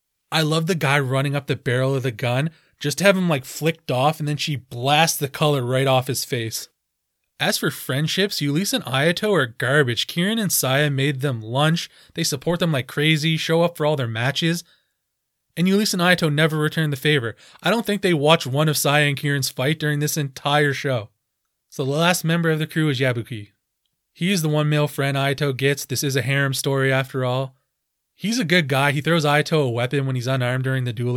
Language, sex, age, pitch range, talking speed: English, male, 20-39, 130-160 Hz, 220 wpm